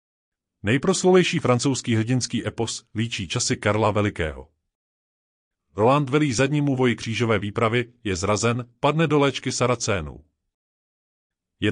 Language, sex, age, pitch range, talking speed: Czech, male, 30-49, 105-140 Hz, 110 wpm